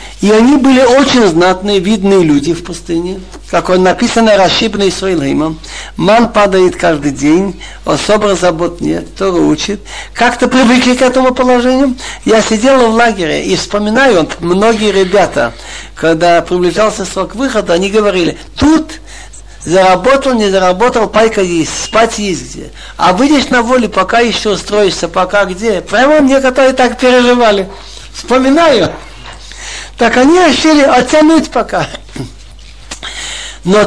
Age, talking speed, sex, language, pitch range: 60-79, 130 wpm, male, Russian, 185-250 Hz